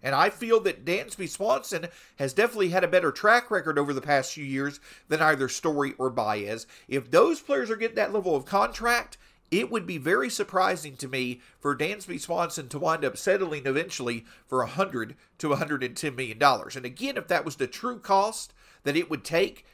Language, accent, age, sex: English, American, 50-69, male